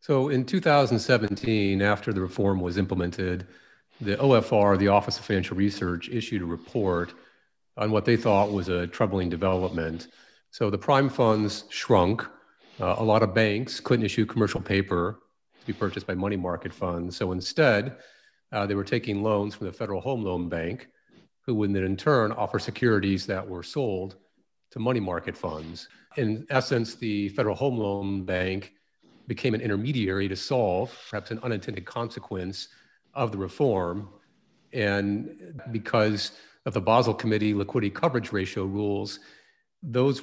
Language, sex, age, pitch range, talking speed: English, male, 40-59, 95-115 Hz, 155 wpm